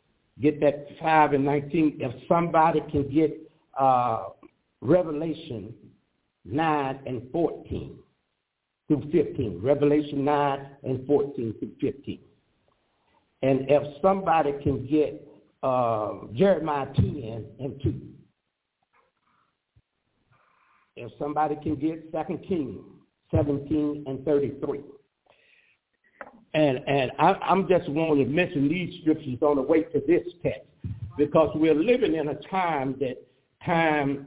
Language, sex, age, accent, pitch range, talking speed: English, male, 60-79, American, 140-180 Hz, 115 wpm